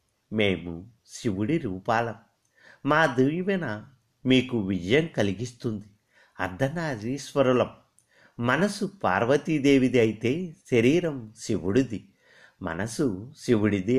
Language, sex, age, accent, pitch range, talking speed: Telugu, male, 50-69, native, 100-145 Hz, 70 wpm